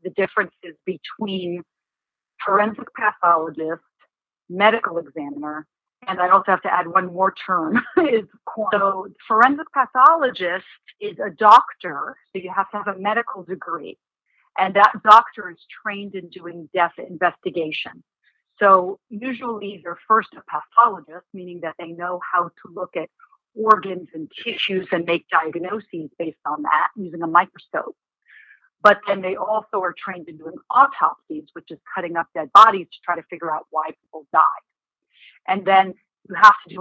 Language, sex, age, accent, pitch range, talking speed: English, female, 50-69, American, 170-215 Hz, 155 wpm